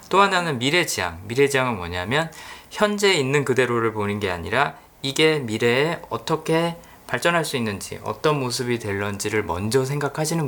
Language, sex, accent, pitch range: Korean, male, native, 105-150 Hz